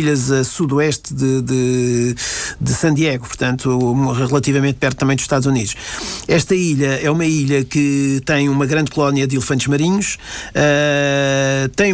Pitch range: 130-150 Hz